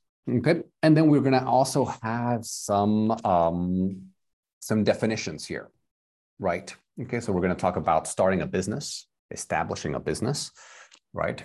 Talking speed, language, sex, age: 145 wpm, English, male, 30-49